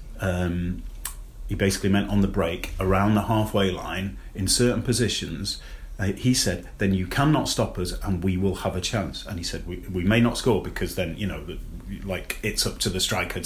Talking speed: 205 wpm